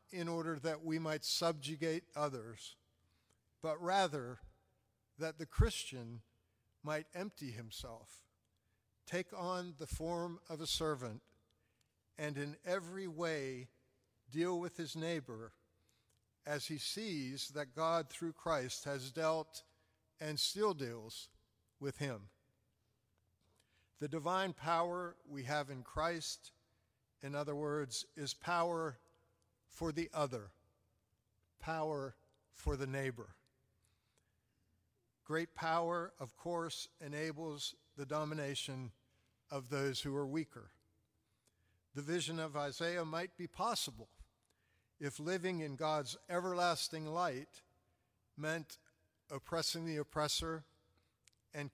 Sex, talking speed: male, 110 wpm